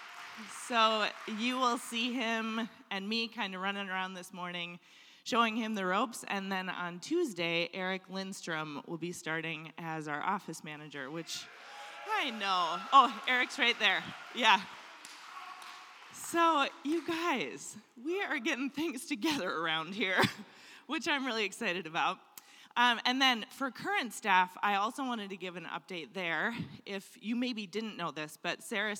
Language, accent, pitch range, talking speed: English, American, 180-250 Hz, 155 wpm